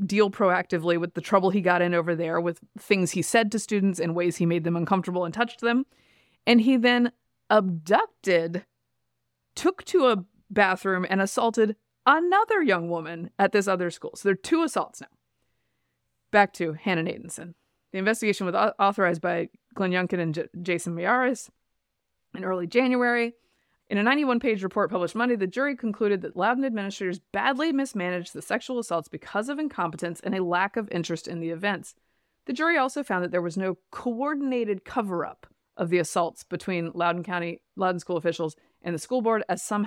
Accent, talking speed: American, 180 wpm